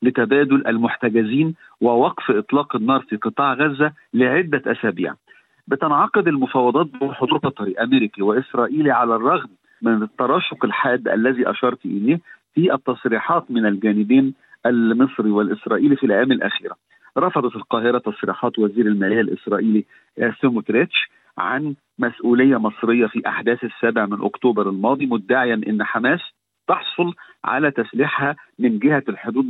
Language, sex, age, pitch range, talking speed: Arabic, male, 50-69, 115-145 Hz, 120 wpm